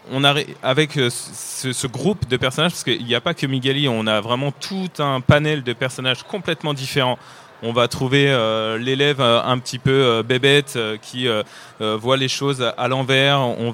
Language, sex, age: French, male, 20-39